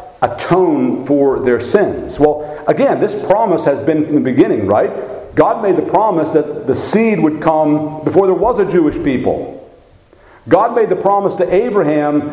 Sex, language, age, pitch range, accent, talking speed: male, English, 50-69, 135-185 Hz, American, 170 wpm